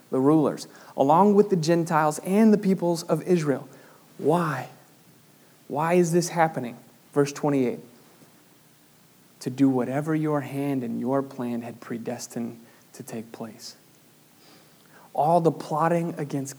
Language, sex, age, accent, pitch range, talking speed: English, male, 30-49, American, 135-155 Hz, 125 wpm